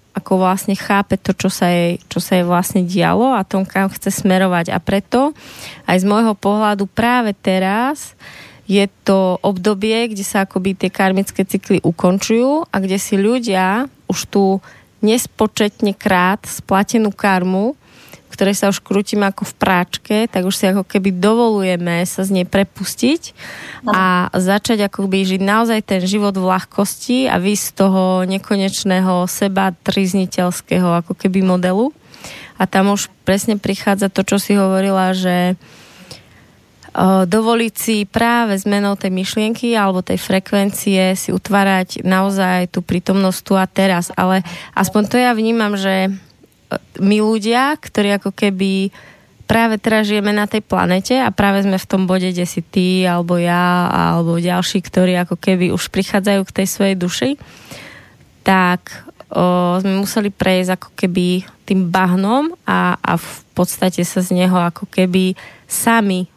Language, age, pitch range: Slovak, 20-39, 185-205 Hz